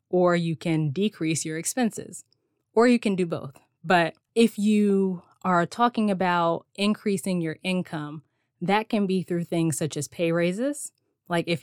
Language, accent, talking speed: English, American, 160 wpm